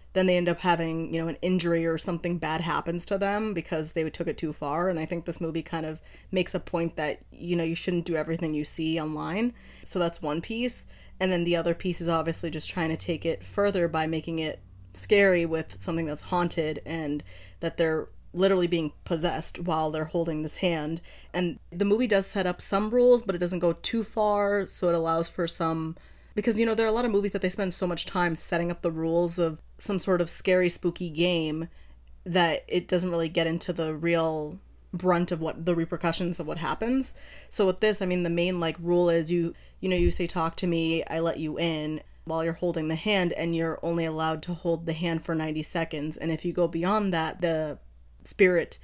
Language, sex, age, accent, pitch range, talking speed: English, female, 20-39, American, 160-180 Hz, 225 wpm